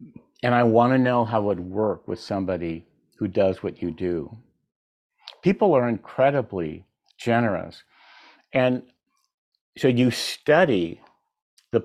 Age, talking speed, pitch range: 50-69, 125 wpm, 95-120 Hz